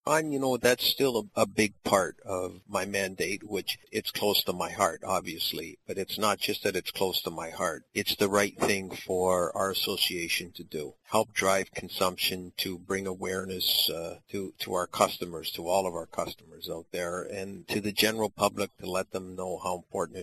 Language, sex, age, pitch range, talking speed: English, male, 50-69, 95-105 Hz, 200 wpm